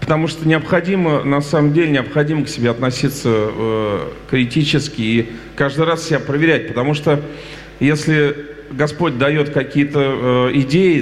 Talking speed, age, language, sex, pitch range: 135 wpm, 40-59, Russian, male, 130-155 Hz